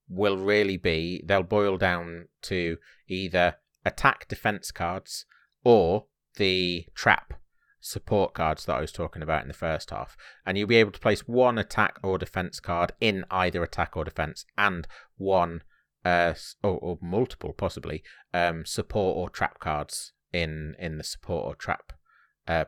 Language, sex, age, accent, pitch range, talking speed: English, male, 30-49, British, 80-95 Hz, 160 wpm